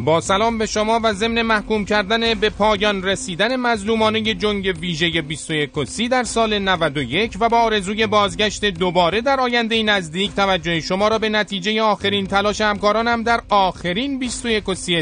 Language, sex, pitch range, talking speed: Persian, male, 170-225 Hz, 155 wpm